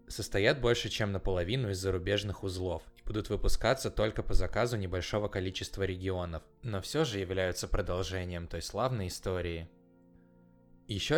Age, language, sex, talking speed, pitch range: 20-39, Russian, male, 135 wpm, 90-110 Hz